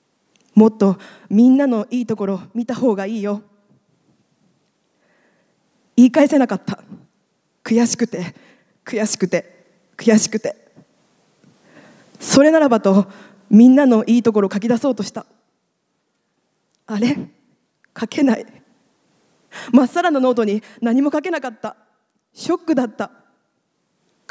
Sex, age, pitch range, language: female, 20-39, 205-255 Hz, Japanese